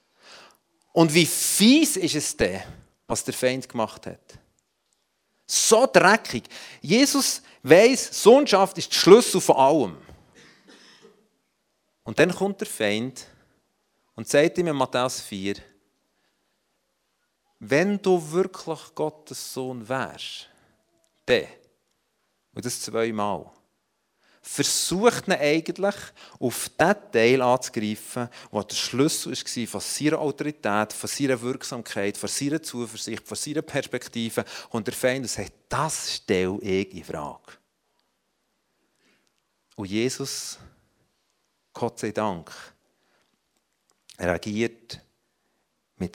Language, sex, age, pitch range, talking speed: German, male, 40-59, 105-155 Hz, 105 wpm